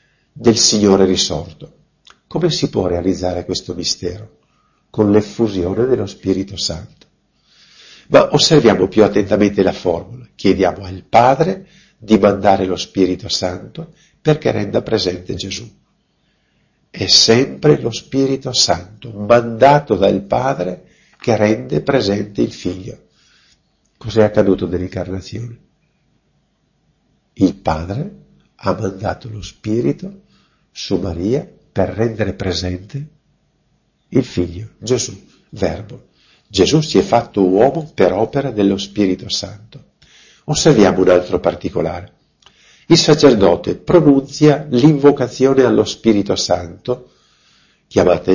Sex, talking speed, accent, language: male, 105 wpm, native, Italian